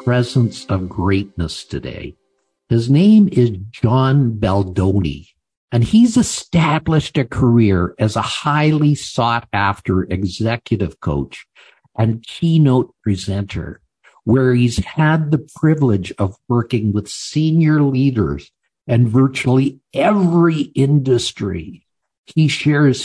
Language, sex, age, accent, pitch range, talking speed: English, male, 50-69, American, 100-145 Hz, 105 wpm